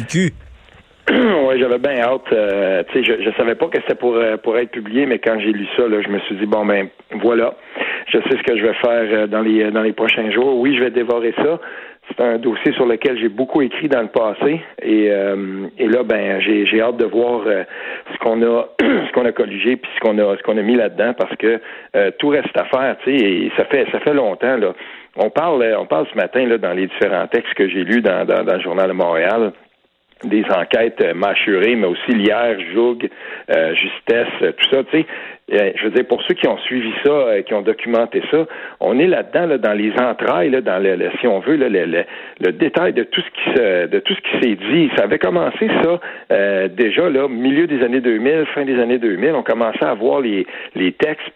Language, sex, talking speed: French, male, 230 wpm